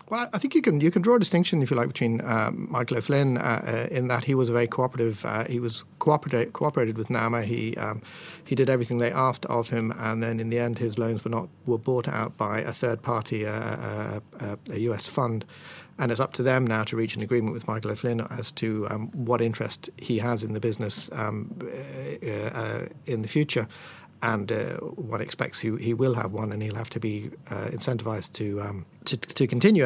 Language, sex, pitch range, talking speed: English, male, 110-130 Hz, 230 wpm